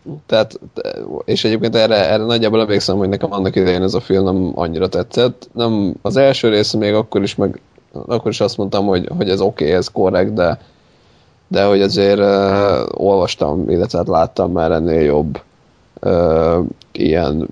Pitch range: 95-115 Hz